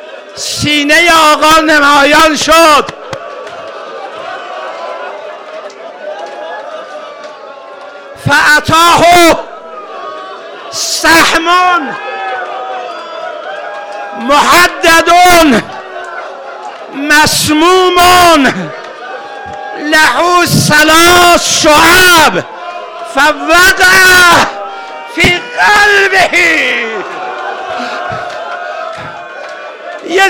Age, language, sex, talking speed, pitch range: 60-79, Persian, male, 30 wpm, 310-350 Hz